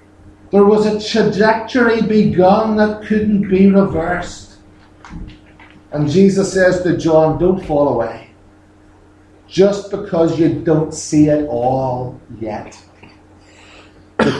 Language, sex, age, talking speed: English, male, 50-69, 110 wpm